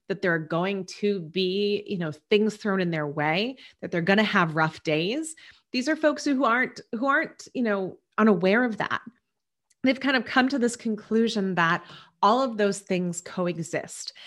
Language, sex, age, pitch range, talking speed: English, female, 30-49, 170-215 Hz, 190 wpm